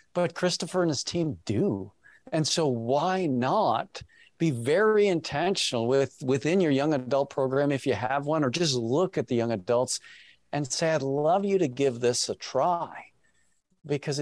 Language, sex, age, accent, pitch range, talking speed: English, male, 50-69, American, 125-165 Hz, 175 wpm